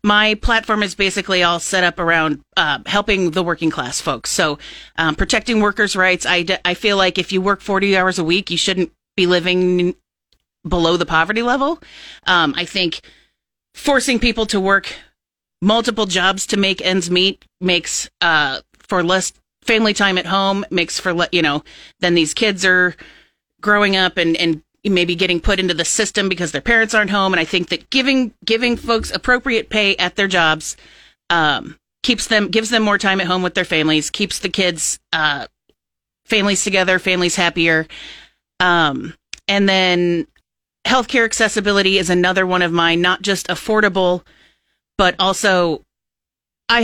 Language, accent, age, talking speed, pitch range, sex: English, American, 30-49, 165 wpm, 180-215 Hz, female